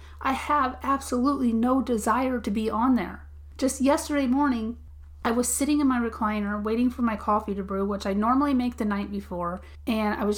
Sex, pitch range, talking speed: female, 195-255 Hz, 195 wpm